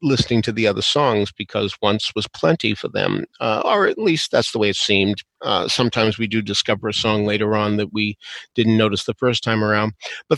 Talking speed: 220 wpm